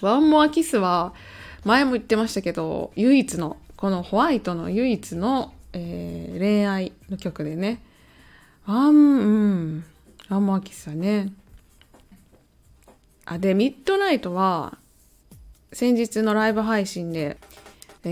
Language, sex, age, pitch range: Japanese, female, 20-39, 160-225 Hz